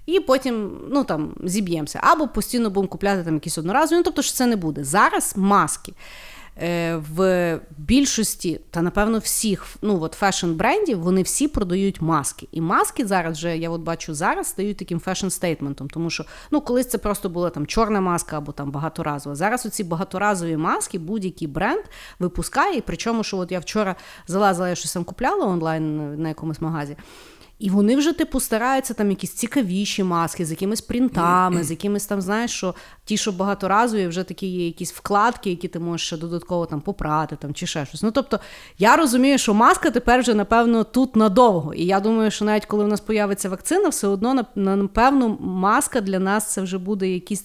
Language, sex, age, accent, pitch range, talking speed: Ukrainian, female, 30-49, native, 170-225 Hz, 180 wpm